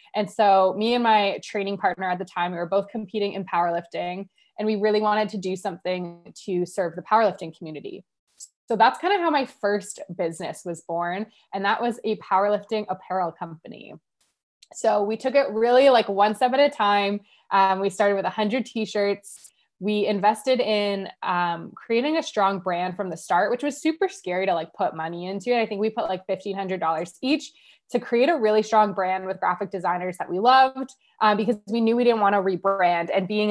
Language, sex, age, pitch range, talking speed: English, female, 20-39, 185-230 Hz, 200 wpm